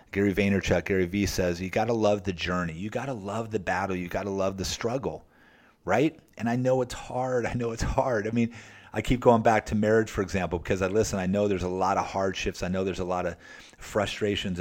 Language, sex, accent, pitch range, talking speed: English, male, American, 95-115 Hz, 245 wpm